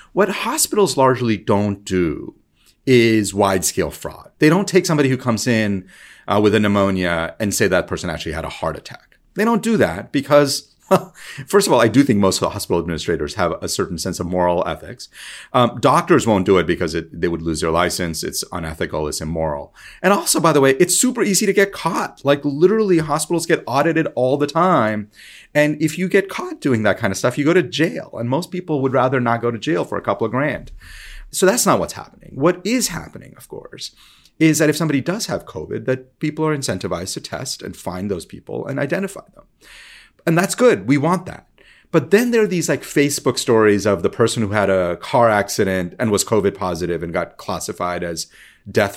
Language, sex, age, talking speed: English, male, 30-49, 215 wpm